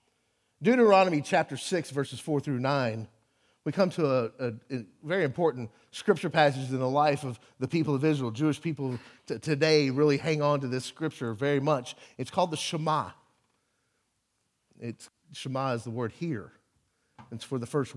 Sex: male